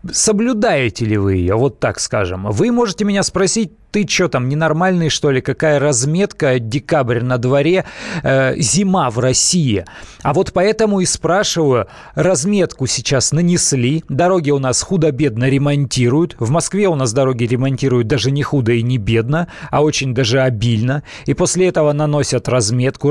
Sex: male